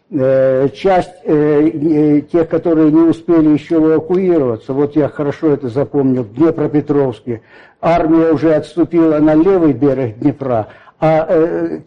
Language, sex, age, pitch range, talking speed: Russian, male, 60-79, 140-175 Hz, 120 wpm